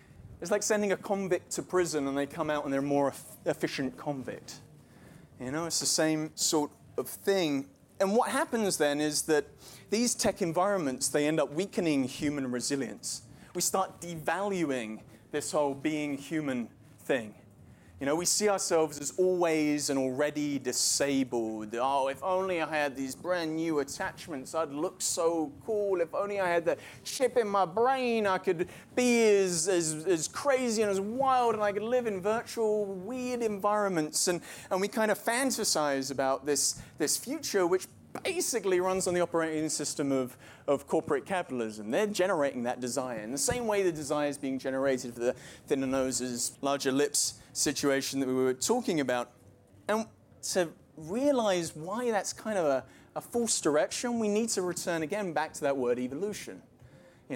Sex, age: male, 30-49